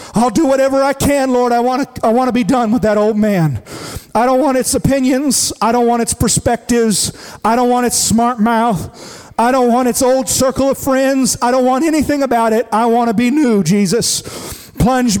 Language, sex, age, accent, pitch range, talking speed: English, male, 40-59, American, 185-240 Hz, 215 wpm